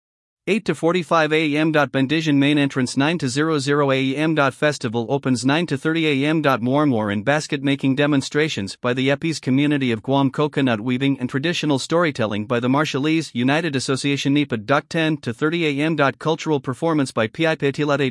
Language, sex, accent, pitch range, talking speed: English, male, American, 130-160 Hz, 160 wpm